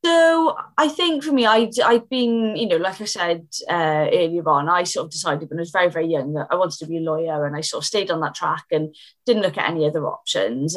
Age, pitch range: 20-39, 160-210 Hz